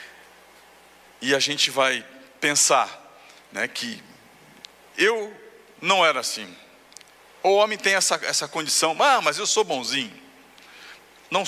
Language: Portuguese